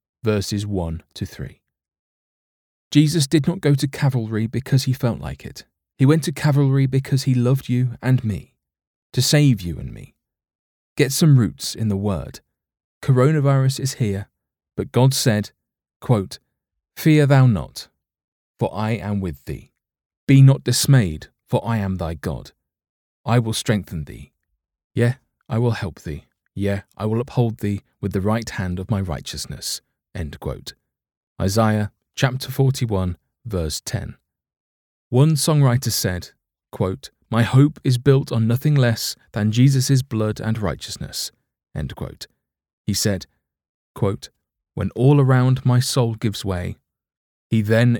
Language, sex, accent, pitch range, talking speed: English, male, British, 90-130 Hz, 145 wpm